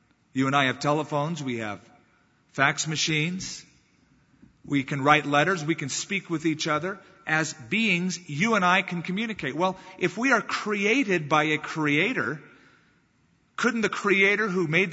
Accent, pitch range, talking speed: American, 140-185 Hz, 155 wpm